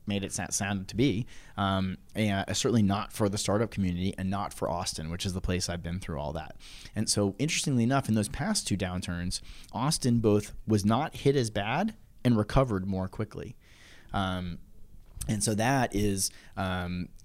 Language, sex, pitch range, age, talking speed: English, male, 95-120 Hz, 30-49, 185 wpm